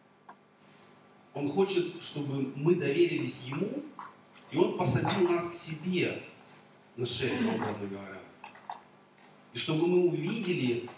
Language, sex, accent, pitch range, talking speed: Russian, male, native, 125-165 Hz, 110 wpm